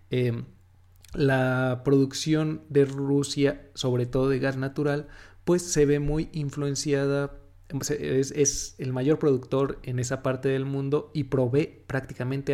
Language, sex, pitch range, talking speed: Spanish, male, 120-145 Hz, 135 wpm